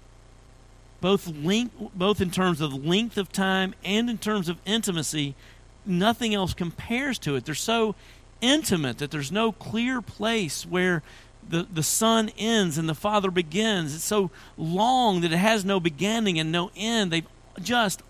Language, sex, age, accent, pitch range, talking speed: English, male, 40-59, American, 130-210 Hz, 160 wpm